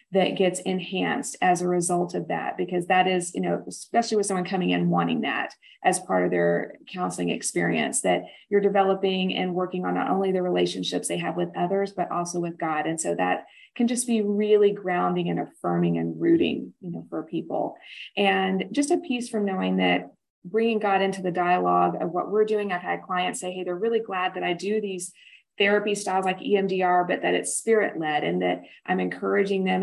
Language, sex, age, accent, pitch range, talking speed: English, female, 30-49, American, 175-210 Hz, 205 wpm